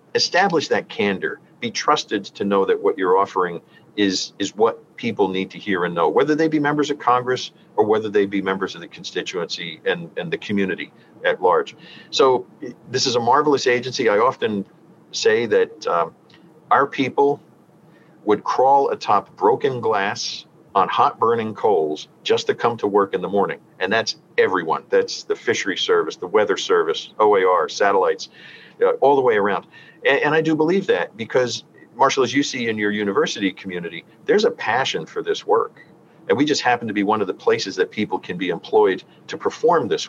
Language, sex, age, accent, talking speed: English, male, 50-69, American, 190 wpm